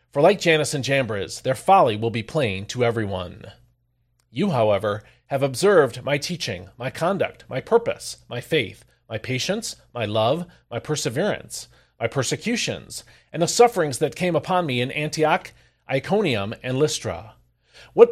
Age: 40-59